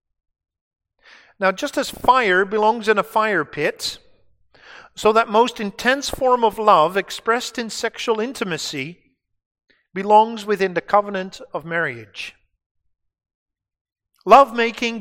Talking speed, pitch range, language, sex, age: 110 wpm, 150-220 Hz, English, male, 50-69